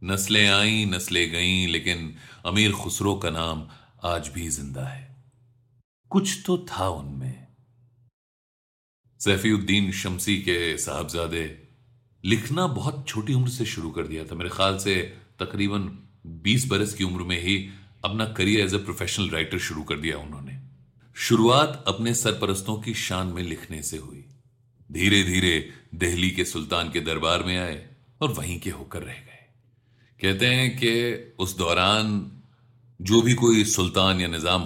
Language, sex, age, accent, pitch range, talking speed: Hindi, male, 40-59, native, 85-120 Hz, 145 wpm